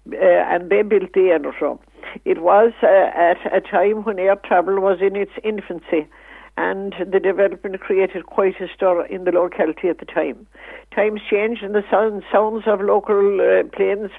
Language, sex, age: English, female, 60-79